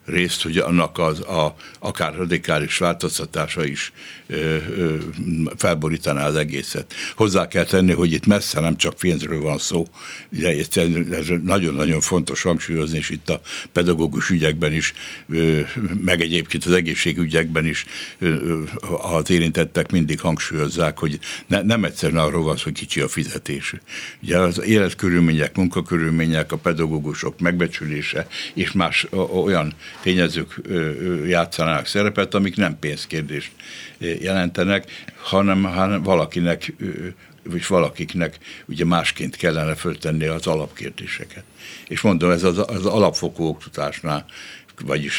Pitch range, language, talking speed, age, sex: 80-90 Hz, Hungarian, 125 wpm, 60-79, male